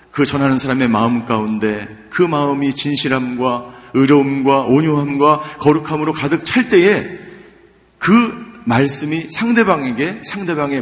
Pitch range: 95-140 Hz